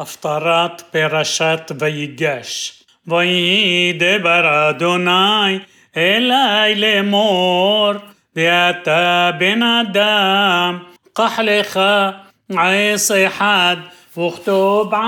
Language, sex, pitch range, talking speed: Hebrew, male, 175-205 Hz, 60 wpm